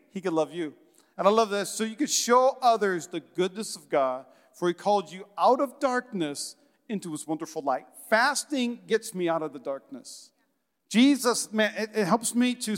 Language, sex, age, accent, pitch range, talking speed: English, male, 40-59, American, 185-265 Hz, 195 wpm